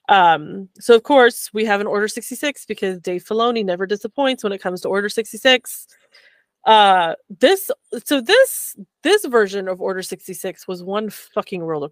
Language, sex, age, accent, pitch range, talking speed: English, female, 20-39, American, 195-280 Hz, 165 wpm